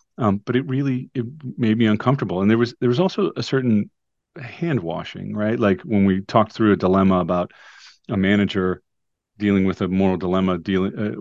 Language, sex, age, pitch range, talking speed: English, male, 40-59, 95-115 Hz, 180 wpm